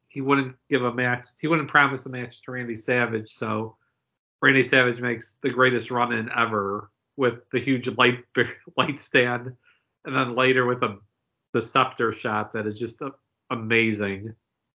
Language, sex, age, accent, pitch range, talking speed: English, male, 40-59, American, 115-130 Hz, 170 wpm